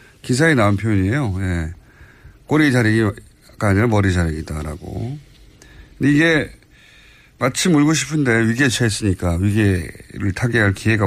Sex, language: male, Korean